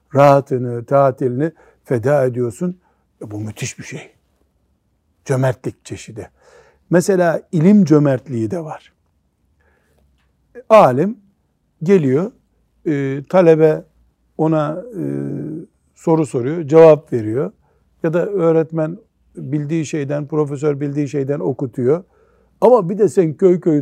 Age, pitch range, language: 60-79, 125-165 Hz, Turkish